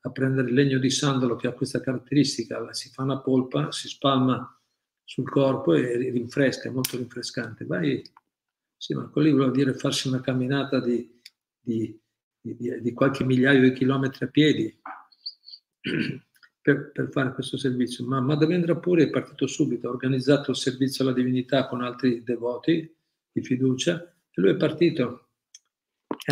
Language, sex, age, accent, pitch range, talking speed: Italian, male, 50-69, native, 125-150 Hz, 155 wpm